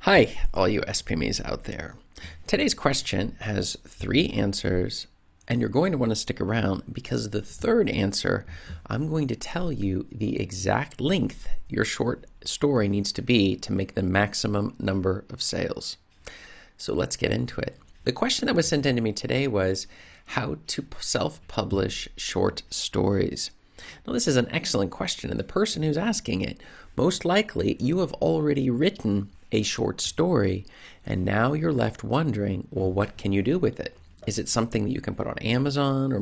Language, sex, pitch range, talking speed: English, male, 100-135 Hz, 175 wpm